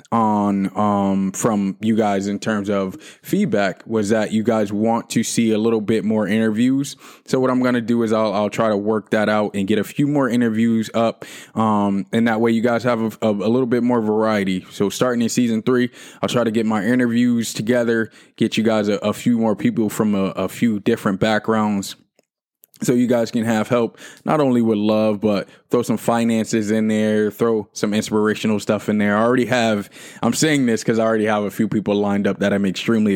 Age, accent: 20-39, American